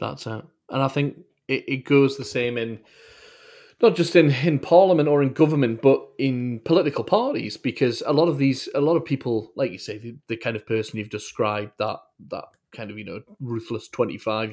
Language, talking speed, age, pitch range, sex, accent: English, 205 wpm, 30-49, 110-135 Hz, male, British